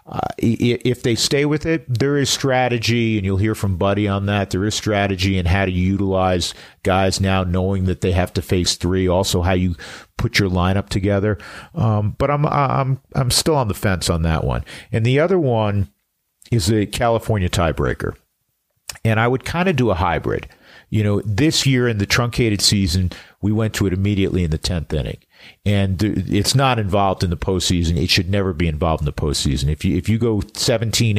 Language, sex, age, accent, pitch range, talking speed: English, male, 50-69, American, 90-120 Hz, 200 wpm